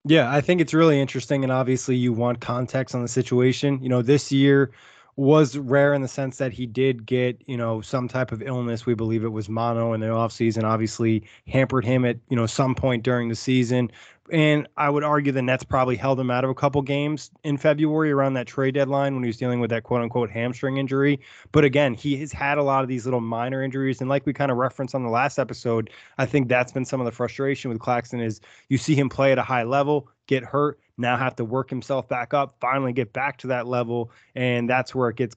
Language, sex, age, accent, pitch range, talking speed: English, male, 20-39, American, 120-140 Hz, 245 wpm